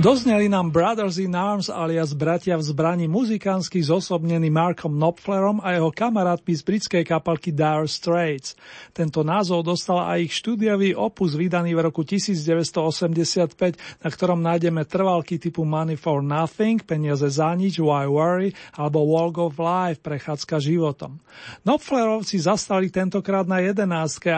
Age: 40-59